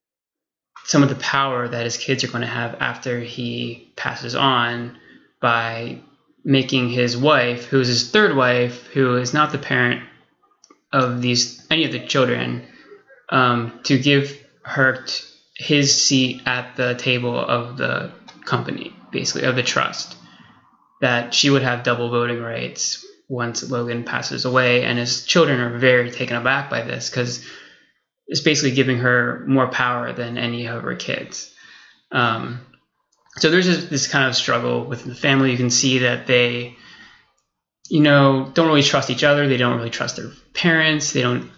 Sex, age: male, 20-39